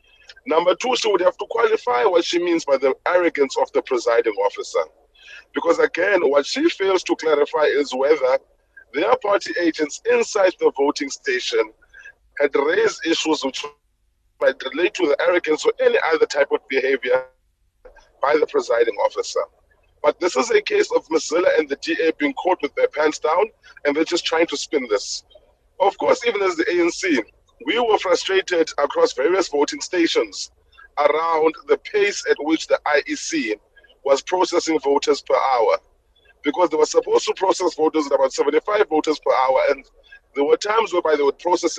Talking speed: 175 wpm